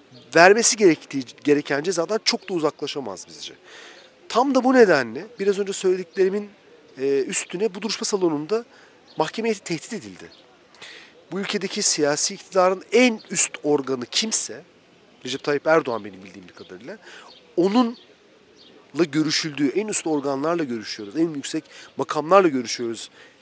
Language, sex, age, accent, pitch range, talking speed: Turkish, male, 40-59, native, 150-210 Hz, 125 wpm